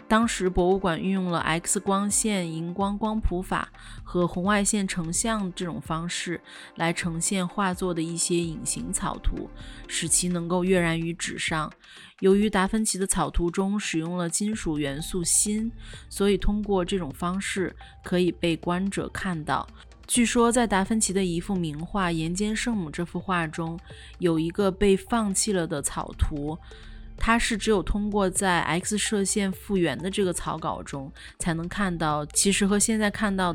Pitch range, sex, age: 170-200 Hz, female, 20-39